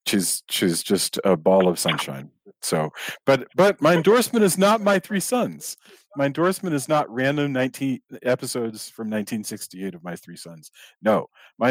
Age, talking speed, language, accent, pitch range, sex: 40-59, 165 wpm, English, American, 95-125 Hz, male